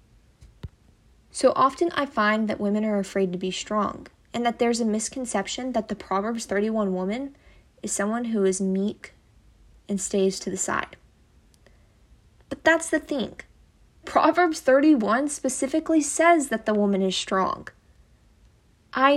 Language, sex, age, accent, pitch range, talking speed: English, female, 10-29, American, 195-260 Hz, 140 wpm